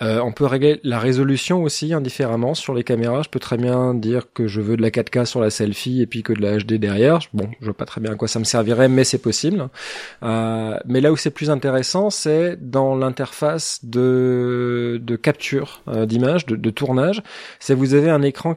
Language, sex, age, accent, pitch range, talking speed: French, male, 20-39, French, 120-150 Hz, 230 wpm